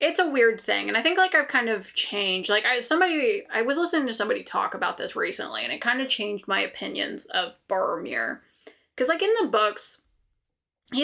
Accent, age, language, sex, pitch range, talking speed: American, 20-39, English, female, 200-300 Hz, 210 wpm